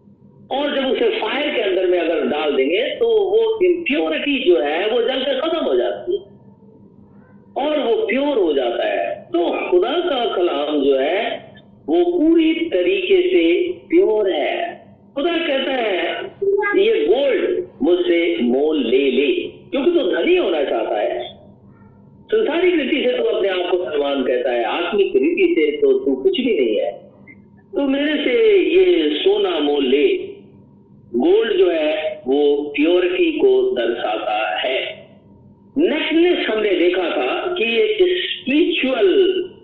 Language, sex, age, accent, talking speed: Hindi, male, 50-69, native, 145 wpm